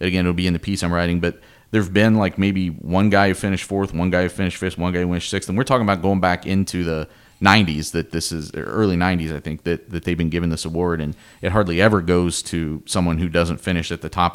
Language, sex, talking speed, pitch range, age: English, male, 270 wpm, 90-105 Hz, 30-49